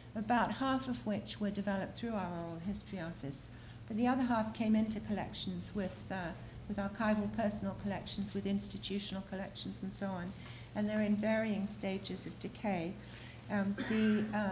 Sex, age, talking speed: female, 60-79, 160 wpm